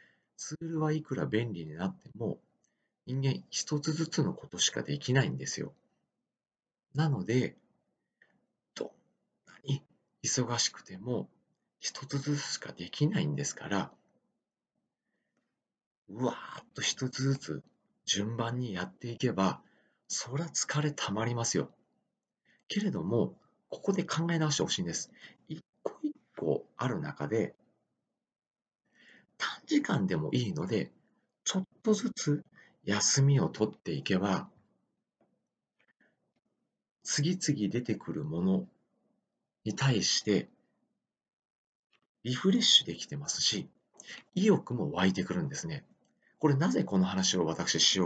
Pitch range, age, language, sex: 120-175 Hz, 40-59, Japanese, male